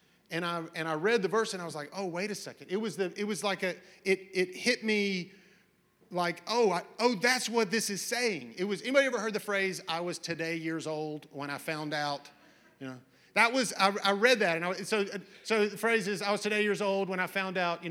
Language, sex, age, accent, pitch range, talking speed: English, male, 40-59, American, 165-205 Hz, 255 wpm